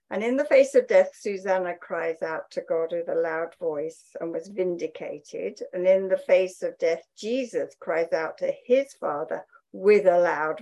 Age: 60-79